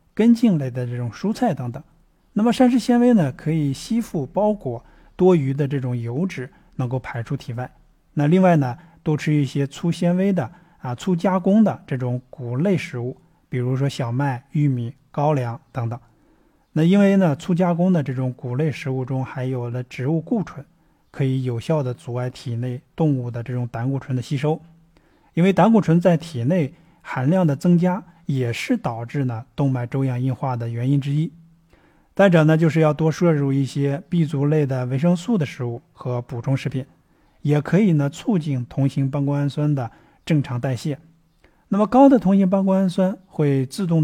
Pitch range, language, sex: 130-170 Hz, Chinese, male